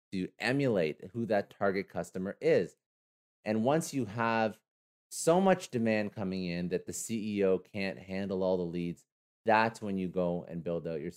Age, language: 30-49, English